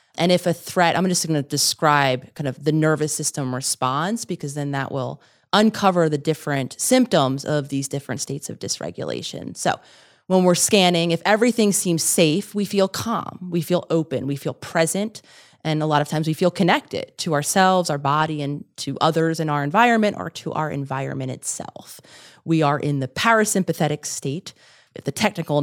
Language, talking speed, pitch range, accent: English, 180 wpm, 145-180 Hz, American